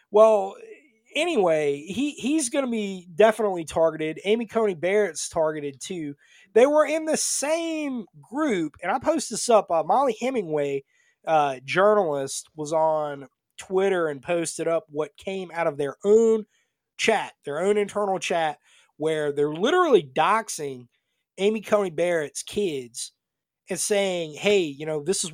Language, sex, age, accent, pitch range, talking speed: English, male, 30-49, American, 150-205 Hz, 145 wpm